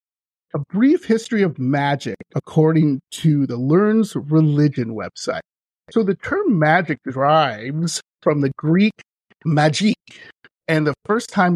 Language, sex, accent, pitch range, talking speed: English, male, American, 145-200 Hz, 125 wpm